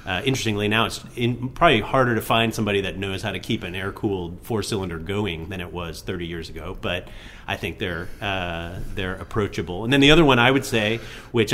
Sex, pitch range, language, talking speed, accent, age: male, 100-115 Hz, English, 215 wpm, American, 30-49